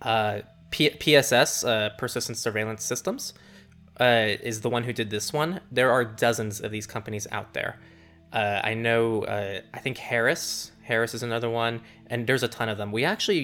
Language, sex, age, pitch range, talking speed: English, male, 20-39, 105-120 Hz, 185 wpm